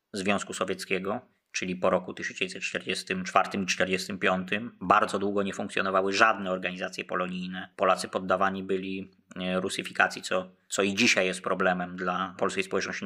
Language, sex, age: Polish, male, 20-39